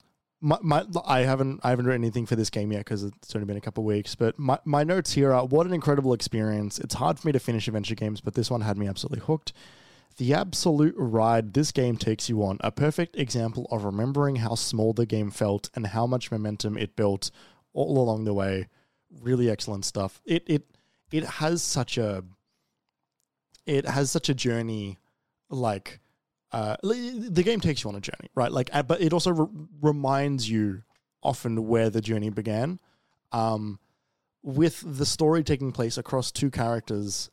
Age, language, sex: 20-39, English, male